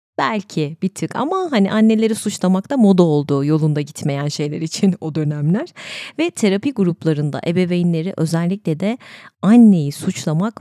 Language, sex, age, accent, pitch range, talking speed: Turkish, female, 30-49, native, 150-215 Hz, 135 wpm